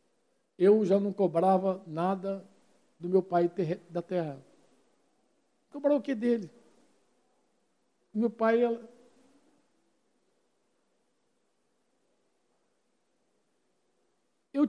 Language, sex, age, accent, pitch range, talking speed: Portuguese, male, 60-79, Brazilian, 210-270 Hz, 80 wpm